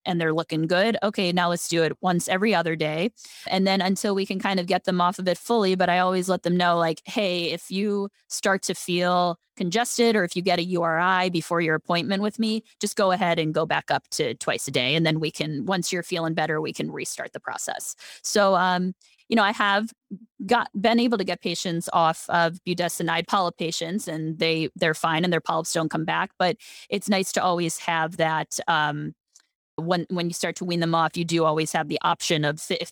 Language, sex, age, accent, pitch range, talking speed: English, female, 20-39, American, 165-195 Hz, 230 wpm